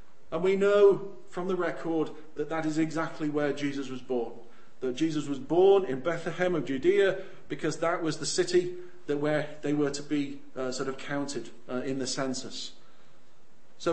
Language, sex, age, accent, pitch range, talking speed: English, male, 40-59, British, 145-180 Hz, 180 wpm